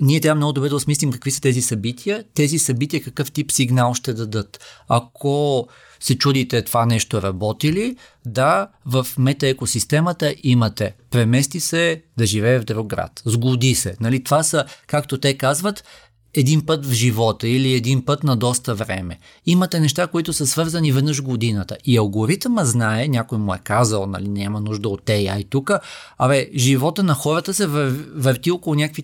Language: Bulgarian